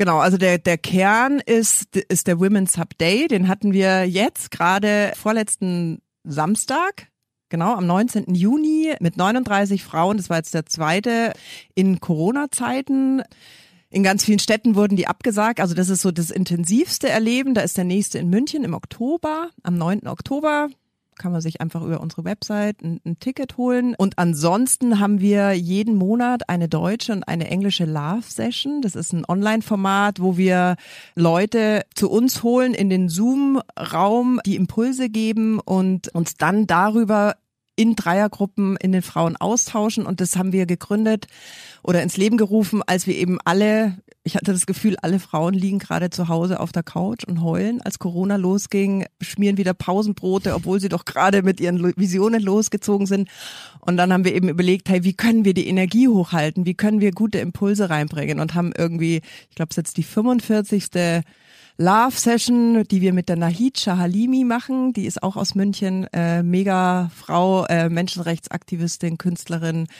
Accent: German